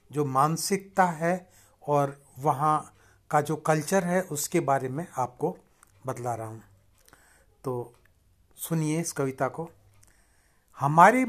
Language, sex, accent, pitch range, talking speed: Hindi, male, native, 115-165 Hz, 115 wpm